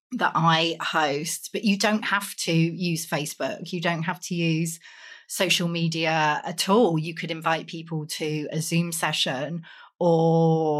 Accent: British